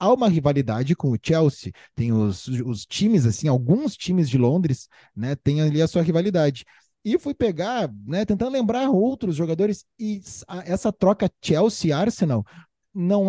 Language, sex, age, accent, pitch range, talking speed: Portuguese, male, 20-39, Brazilian, 130-180 Hz, 155 wpm